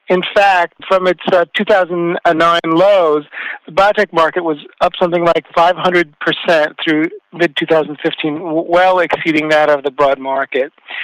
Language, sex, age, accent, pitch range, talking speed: English, male, 50-69, American, 160-185 Hz, 130 wpm